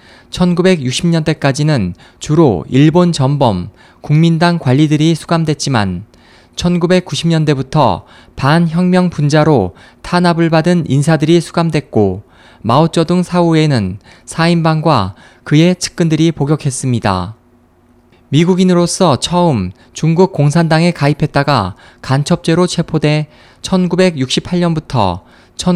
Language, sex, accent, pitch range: Korean, male, native, 120-170 Hz